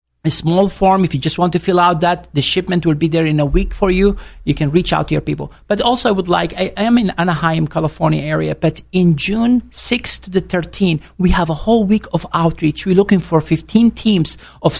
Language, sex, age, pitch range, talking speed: English, male, 50-69, 160-205 Hz, 240 wpm